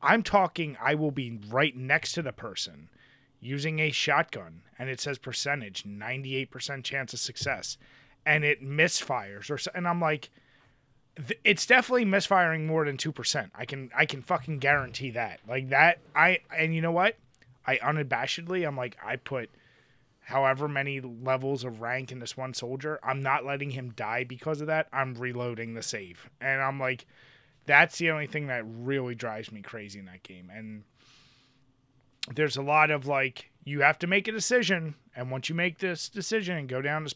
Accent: American